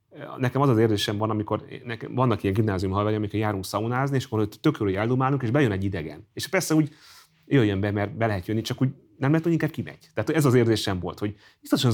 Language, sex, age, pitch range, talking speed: Hungarian, male, 30-49, 100-130 Hz, 225 wpm